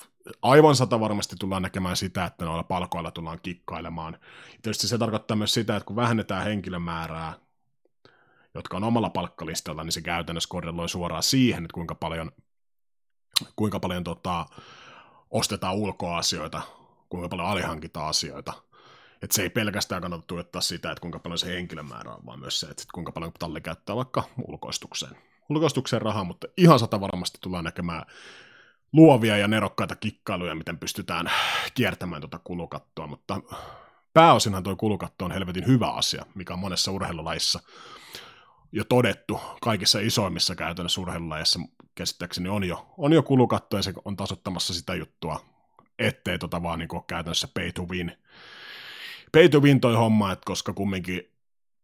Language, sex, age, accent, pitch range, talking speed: Finnish, male, 30-49, native, 85-110 Hz, 145 wpm